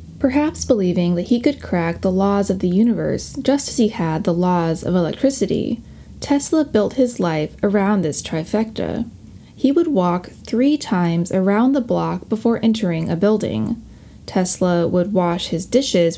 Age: 20-39